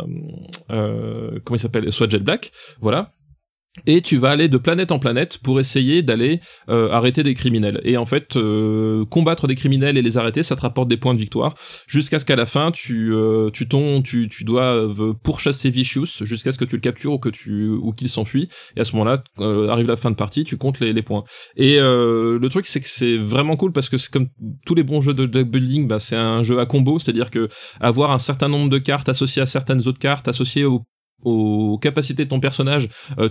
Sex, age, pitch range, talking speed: male, 20-39, 120-145 Hz, 230 wpm